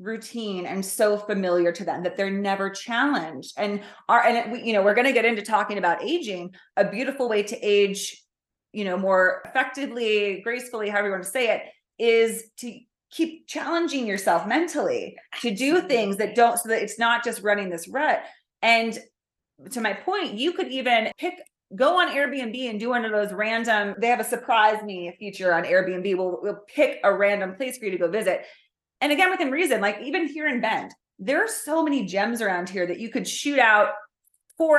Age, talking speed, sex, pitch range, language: 30-49, 200 wpm, female, 195-255 Hz, English